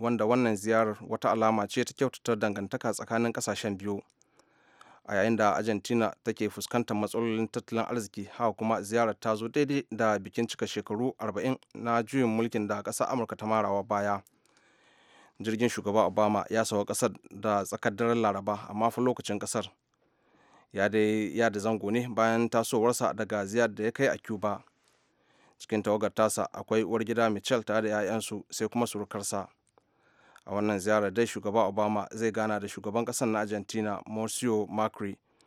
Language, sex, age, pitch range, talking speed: English, male, 30-49, 105-120 Hz, 150 wpm